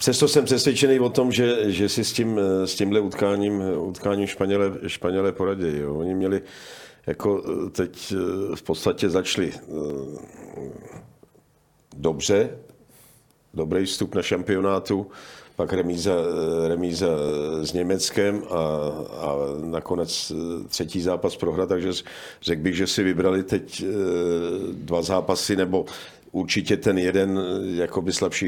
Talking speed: 110 wpm